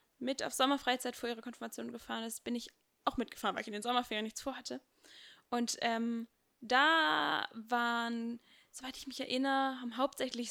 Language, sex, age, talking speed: German, female, 10-29, 165 wpm